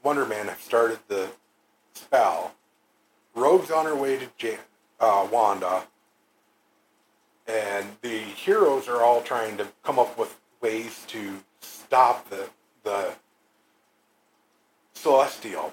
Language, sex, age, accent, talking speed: English, male, 50-69, American, 115 wpm